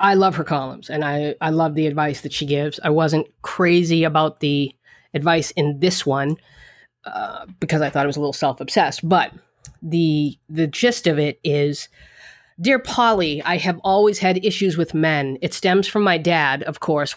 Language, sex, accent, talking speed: English, female, American, 190 wpm